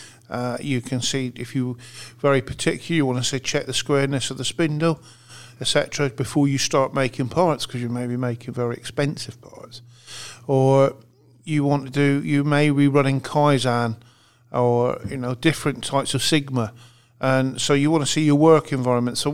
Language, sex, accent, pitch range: English, male, British, 125-145 Hz